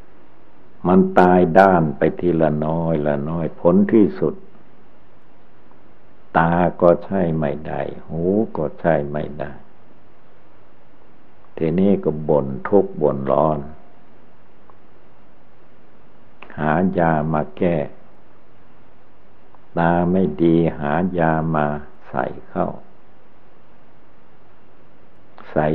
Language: Thai